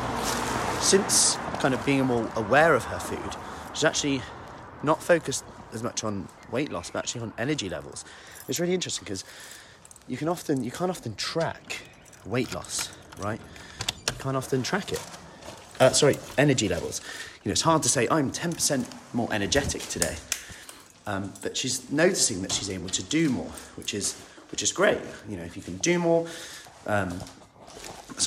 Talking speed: 170 wpm